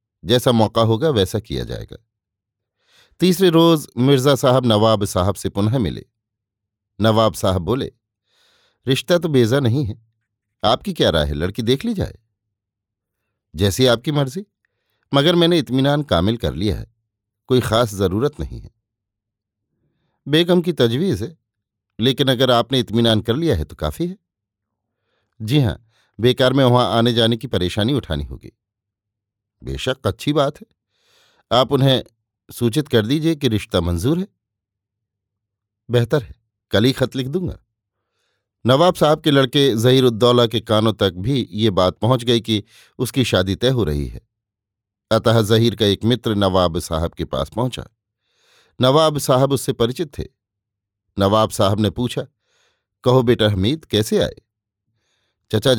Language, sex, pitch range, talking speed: Hindi, male, 105-130 Hz, 145 wpm